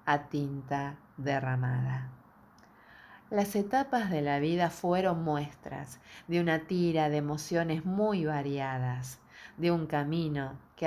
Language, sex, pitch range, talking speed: Spanish, female, 140-170 Hz, 115 wpm